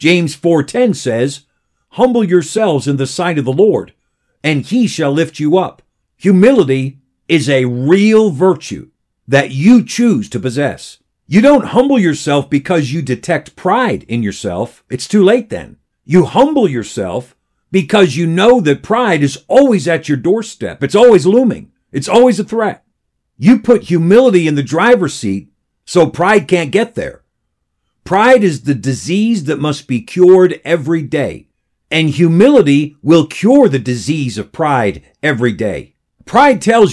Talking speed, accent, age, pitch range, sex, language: 155 wpm, American, 50-69, 140-200 Hz, male, English